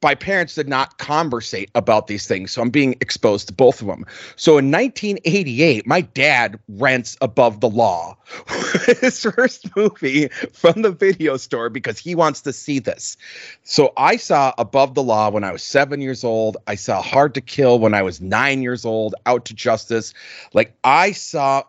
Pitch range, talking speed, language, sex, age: 110-150 Hz, 185 wpm, English, male, 30-49